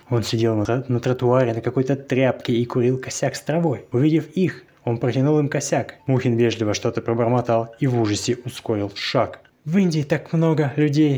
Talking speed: 170 wpm